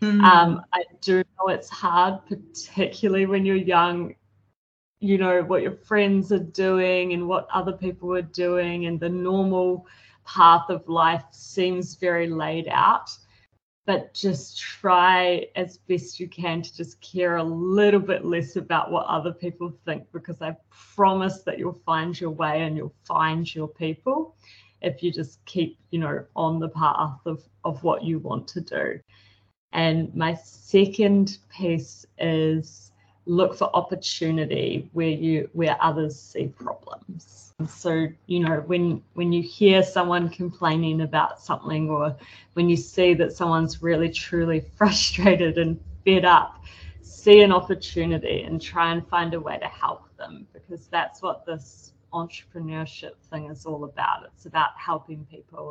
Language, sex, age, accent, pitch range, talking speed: English, female, 20-39, Australian, 155-180 Hz, 155 wpm